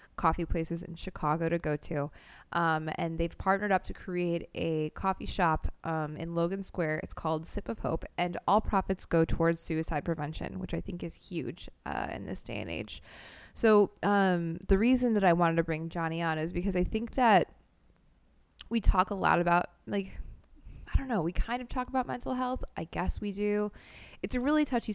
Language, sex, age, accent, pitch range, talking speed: English, female, 20-39, American, 160-190 Hz, 200 wpm